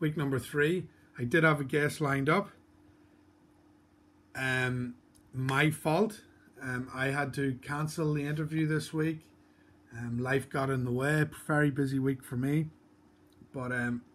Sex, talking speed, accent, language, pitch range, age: male, 150 wpm, Irish, English, 125-150 Hz, 30-49